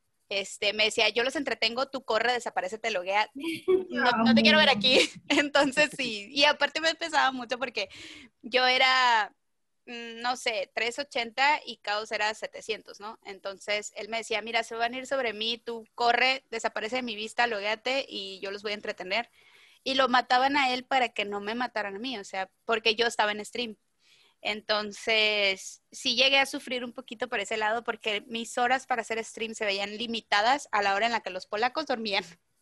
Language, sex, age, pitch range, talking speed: Spanish, female, 20-39, 215-265 Hz, 195 wpm